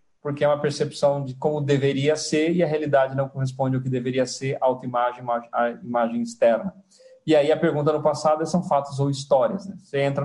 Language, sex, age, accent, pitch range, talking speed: Portuguese, male, 40-59, Brazilian, 125-155 Hz, 210 wpm